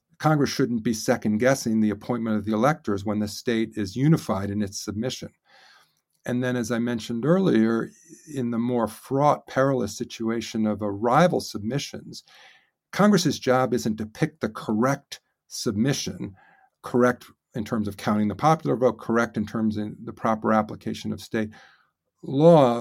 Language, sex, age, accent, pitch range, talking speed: English, male, 50-69, American, 110-140 Hz, 155 wpm